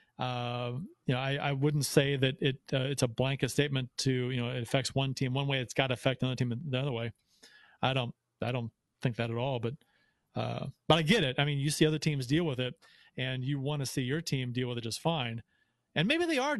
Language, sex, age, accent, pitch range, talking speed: English, male, 40-59, American, 125-160 Hz, 255 wpm